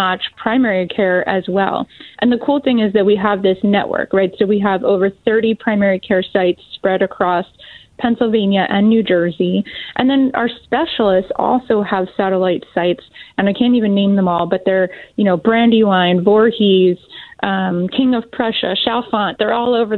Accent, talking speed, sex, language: American, 175 wpm, female, English